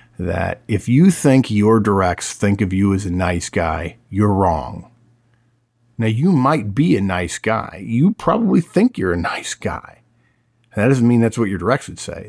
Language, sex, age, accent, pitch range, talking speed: English, male, 50-69, American, 100-125 Hz, 185 wpm